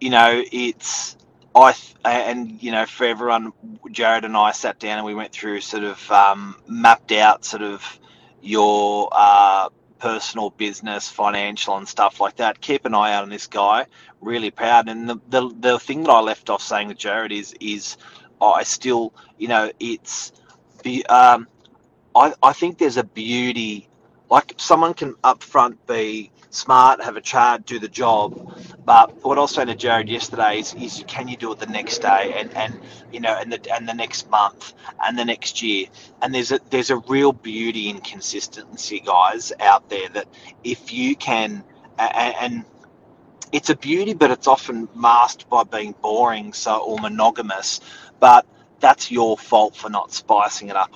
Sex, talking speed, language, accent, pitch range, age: male, 180 wpm, English, Australian, 105-125 Hz, 30-49